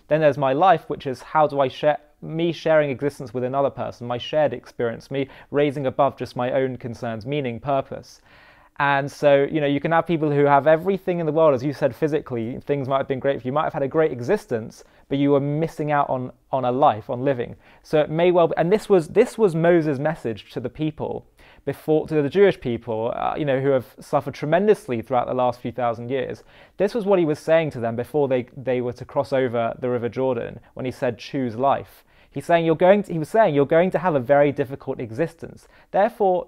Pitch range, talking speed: 125-155 Hz, 230 wpm